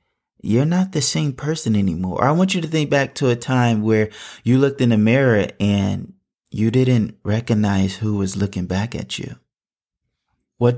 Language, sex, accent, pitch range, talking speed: English, male, American, 100-125 Hz, 180 wpm